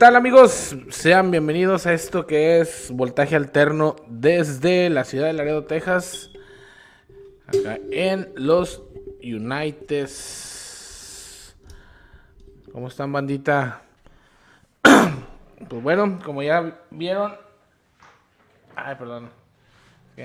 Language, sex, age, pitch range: Spanish, male, 20-39, 125-175 Hz